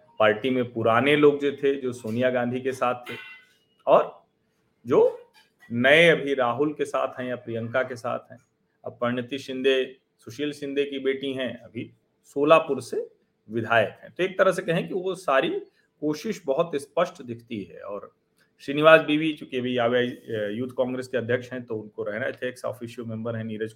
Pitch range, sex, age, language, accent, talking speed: 120-180 Hz, male, 40-59, Hindi, native, 175 wpm